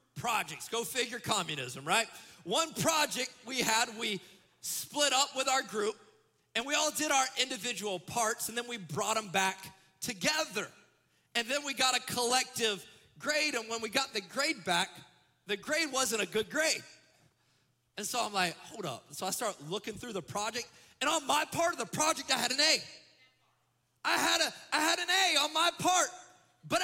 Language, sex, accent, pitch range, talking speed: English, male, American, 230-315 Hz, 190 wpm